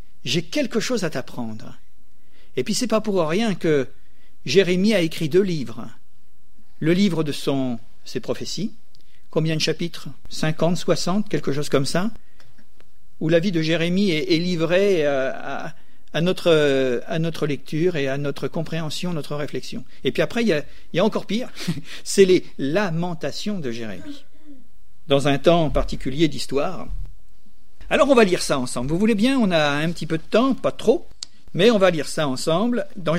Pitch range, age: 145-210 Hz, 50-69